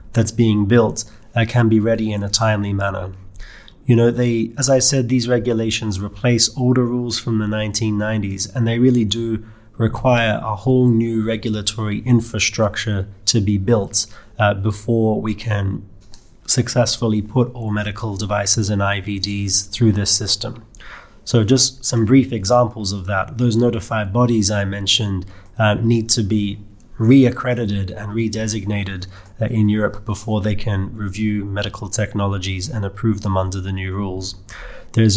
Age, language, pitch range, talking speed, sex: 30-49, English, 100-115 Hz, 150 wpm, male